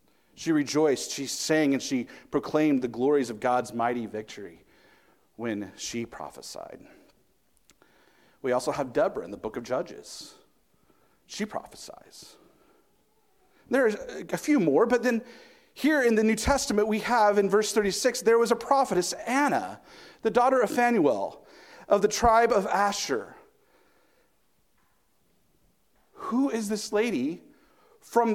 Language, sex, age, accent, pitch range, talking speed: English, male, 40-59, American, 200-295 Hz, 135 wpm